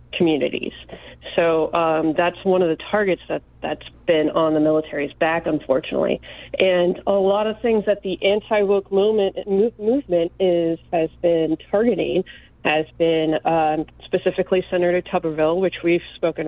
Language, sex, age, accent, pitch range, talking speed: English, female, 40-59, American, 160-185 Hz, 145 wpm